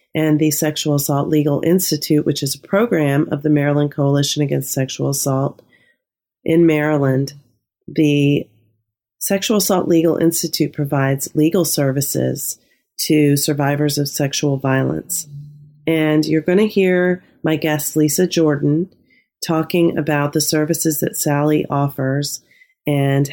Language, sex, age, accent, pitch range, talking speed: English, female, 40-59, American, 150-170 Hz, 125 wpm